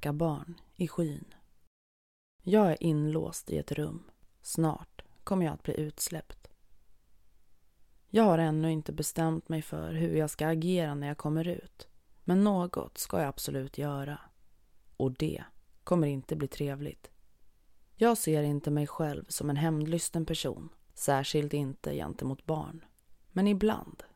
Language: Swedish